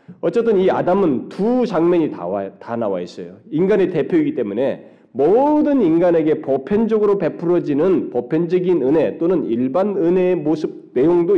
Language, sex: Korean, male